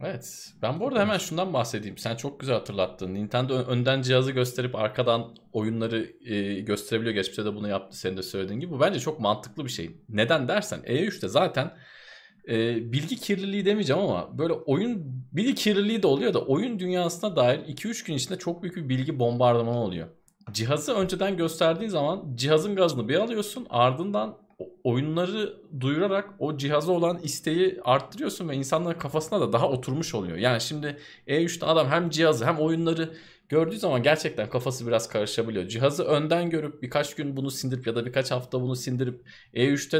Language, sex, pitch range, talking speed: Turkish, male, 120-170 Hz, 170 wpm